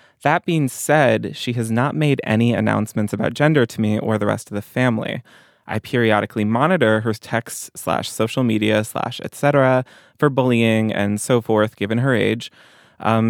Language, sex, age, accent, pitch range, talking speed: English, male, 20-39, American, 105-125 Hz, 160 wpm